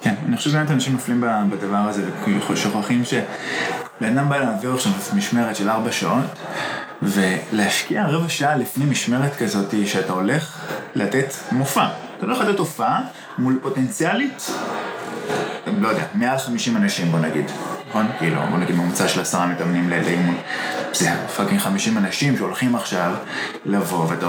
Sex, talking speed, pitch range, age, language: male, 150 wpm, 95-140 Hz, 20-39, Hebrew